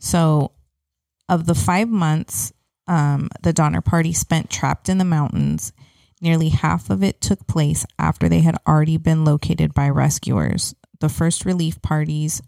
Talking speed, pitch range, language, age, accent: 155 wpm, 145-170 Hz, English, 20-39, American